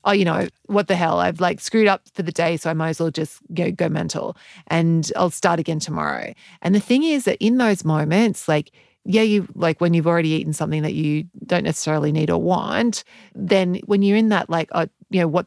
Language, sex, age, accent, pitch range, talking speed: English, female, 30-49, Australian, 165-210 Hz, 235 wpm